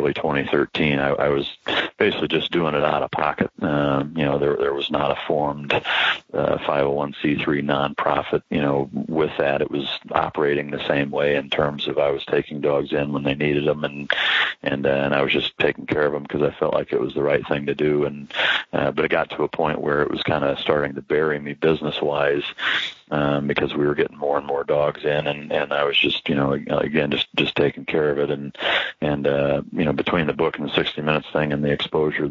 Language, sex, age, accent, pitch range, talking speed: English, male, 40-59, American, 70-75 Hz, 235 wpm